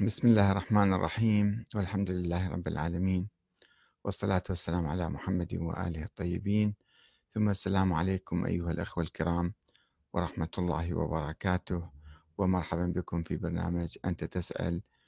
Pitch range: 90-115 Hz